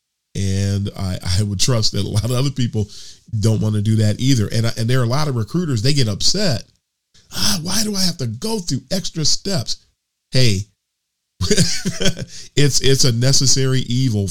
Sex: male